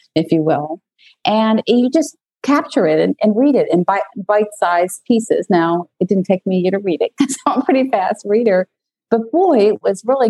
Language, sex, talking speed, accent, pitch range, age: English, female, 215 wpm, American, 170-235 Hz, 50-69